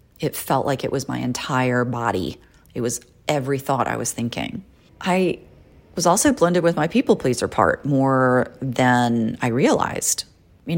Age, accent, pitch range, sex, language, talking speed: 30-49, American, 125-170 Hz, female, English, 160 wpm